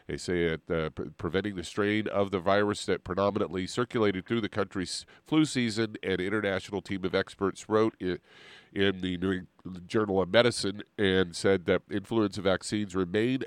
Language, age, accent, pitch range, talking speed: English, 50-69, American, 90-110 Hz, 160 wpm